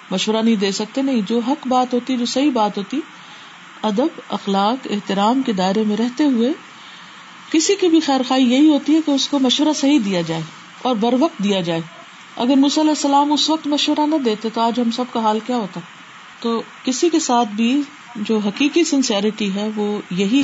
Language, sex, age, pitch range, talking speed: Urdu, female, 40-59, 210-260 Hz, 190 wpm